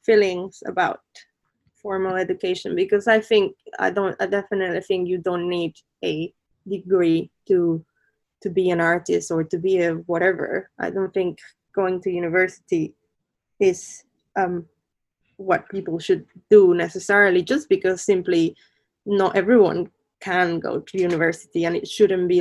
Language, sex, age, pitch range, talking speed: English, female, 20-39, 175-200 Hz, 140 wpm